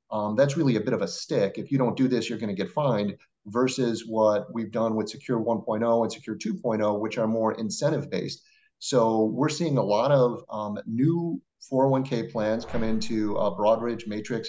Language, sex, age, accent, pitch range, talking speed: English, male, 30-49, American, 110-125 Hz, 200 wpm